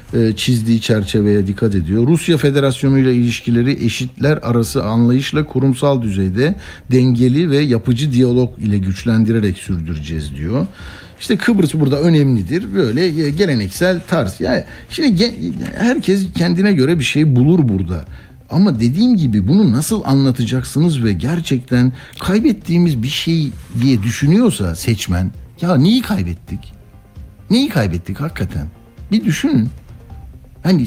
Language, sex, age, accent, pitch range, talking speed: Turkish, male, 60-79, native, 105-155 Hz, 115 wpm